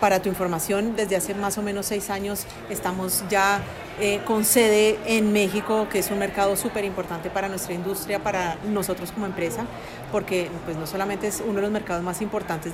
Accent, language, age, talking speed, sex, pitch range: Colombian, Spanish, 40-59, 190 wpm, female, 185-210 Hz